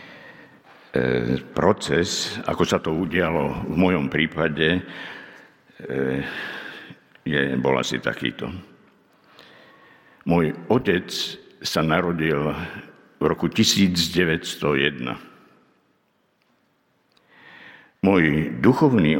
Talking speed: 65 wpm